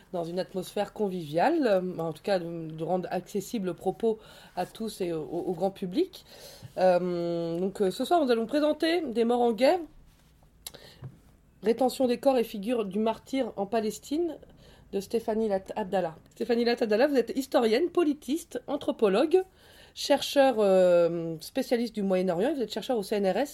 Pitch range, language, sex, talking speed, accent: 195-245 Hz, French, female, 160 wpm, French